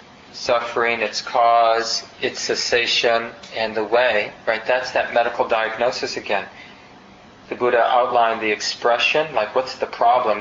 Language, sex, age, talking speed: English, male, 30-49, 135 wpm